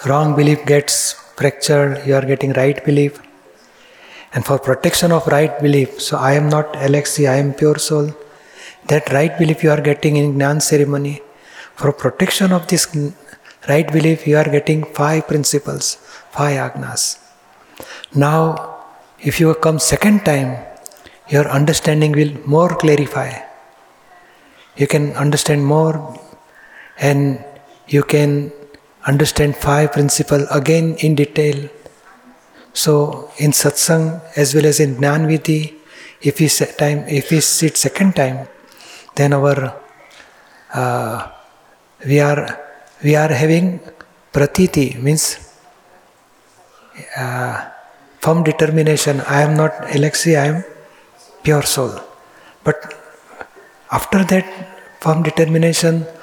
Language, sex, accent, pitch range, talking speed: Gujarati, male, native, 145-155 Hz, 120 wpm